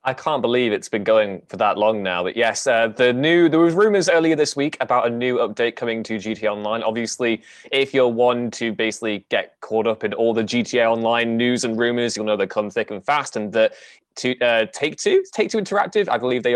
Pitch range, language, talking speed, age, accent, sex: 110-145 Hz, English, 225 wpm, 20-39, British, male